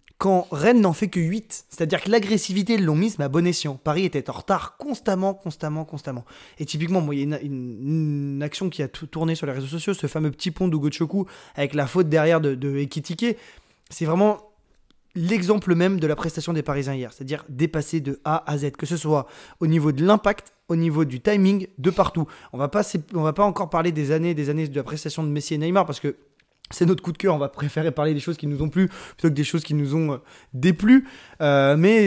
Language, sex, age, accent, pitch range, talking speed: French, male, 20-39, French, 145-180 Hz, 235 wpm